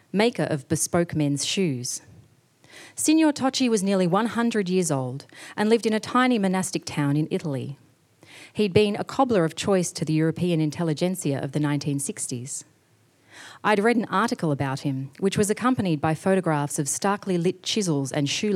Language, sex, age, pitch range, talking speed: English, female, 40-59, 140-195 Hz, 165 wpm